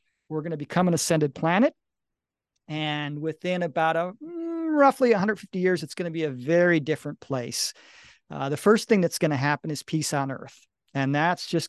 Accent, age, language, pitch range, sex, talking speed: American, 40-59, English, 145-195 Hz, male, 175 wpm